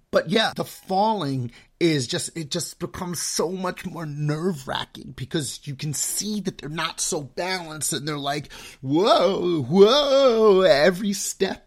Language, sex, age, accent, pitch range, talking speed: English, male, 30-49, American, 140-185 Hz, 155 wpm